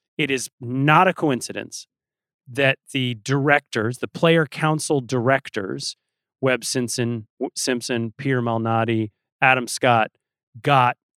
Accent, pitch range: American, 120-155 Hz